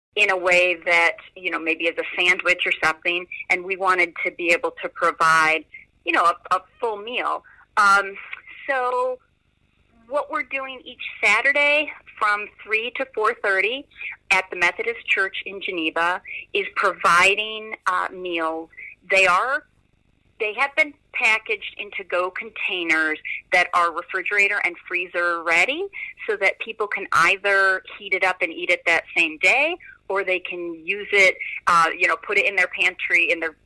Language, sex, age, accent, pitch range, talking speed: English, female, 40-59, American, 175-250 Hz, 160 wpm